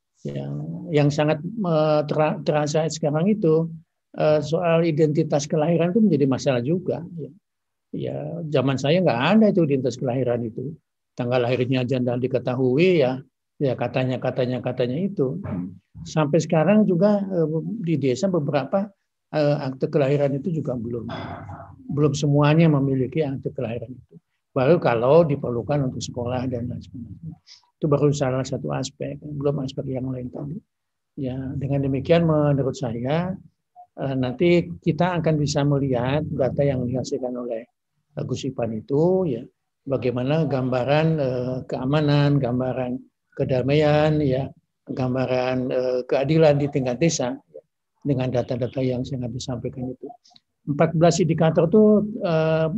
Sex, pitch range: male, 130-160 Hz